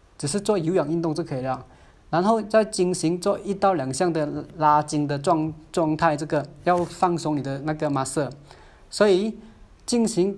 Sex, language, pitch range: male, Chinese, 140-185 Hz